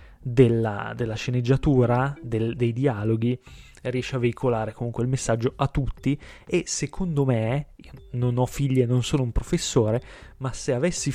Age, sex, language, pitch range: 20-39, male, Italian, 115-145 Hz